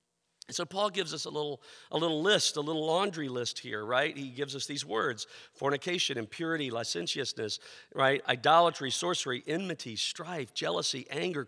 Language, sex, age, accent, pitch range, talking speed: English, male, 50-69, American, 120-175 Hz, 155 wpm